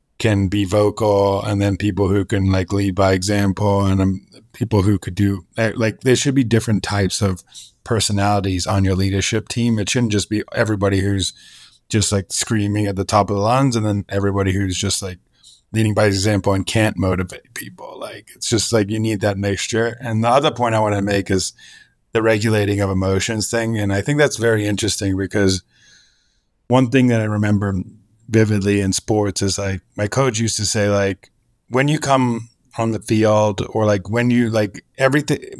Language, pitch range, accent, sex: English, 100-115 Hz, American, male